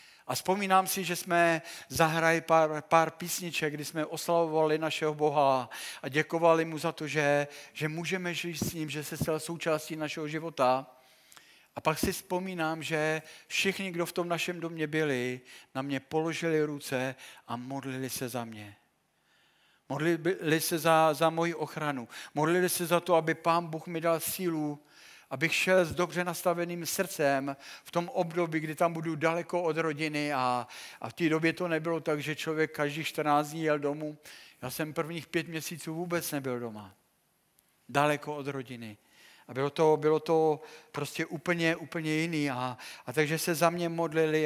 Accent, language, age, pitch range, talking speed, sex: native, Czech, 50-69, 145-170 Hz, 165 wpm, male